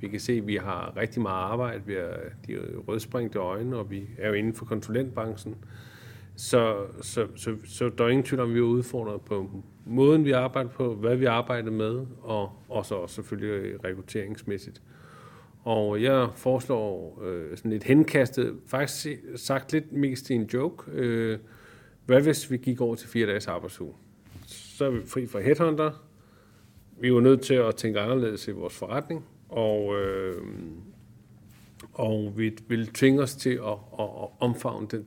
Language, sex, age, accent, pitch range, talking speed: Danish, male, 40-59, native, 110-130 Hz, 175 wpm